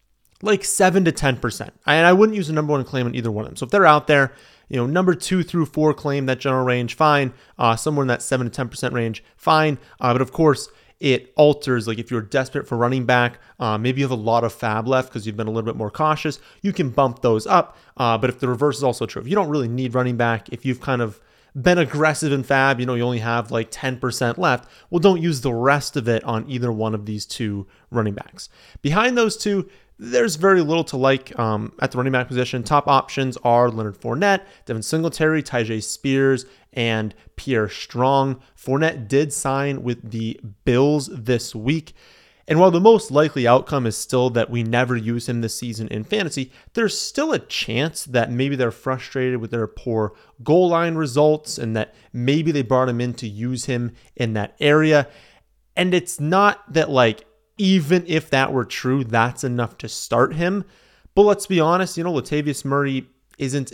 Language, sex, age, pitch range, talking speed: English, male, 30-49, 120-155 Hz, 210 wpm